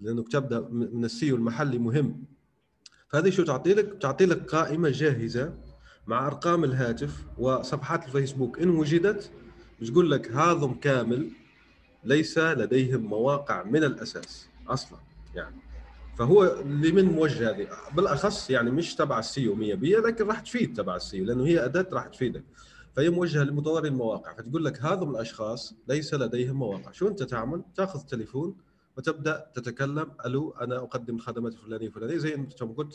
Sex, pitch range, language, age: male, 115-150 Hz, Arabic, 30-49